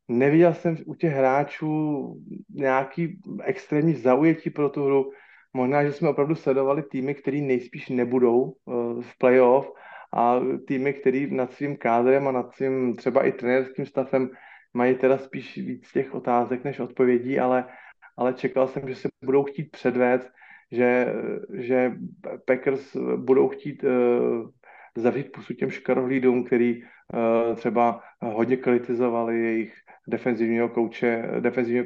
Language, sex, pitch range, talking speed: Slovak, male, 120-140 Hz, 130 wpm